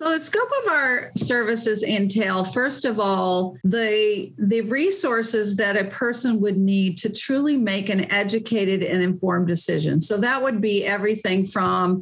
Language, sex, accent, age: English, female, American, 50-69